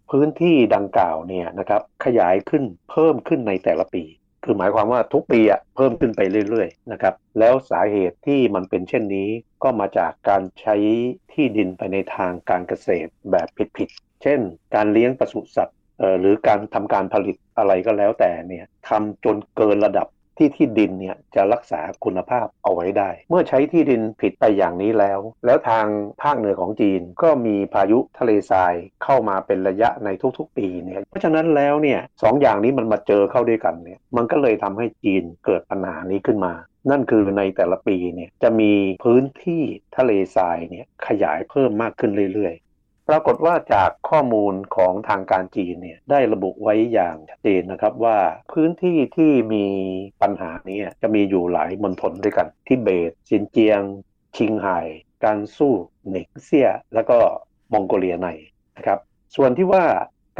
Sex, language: male, Thai